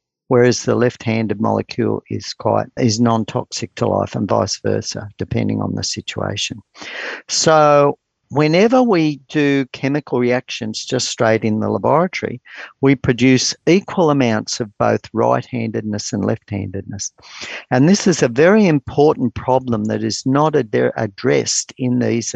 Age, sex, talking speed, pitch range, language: 50-69, male, 130 wpm, 110-140 Hz, English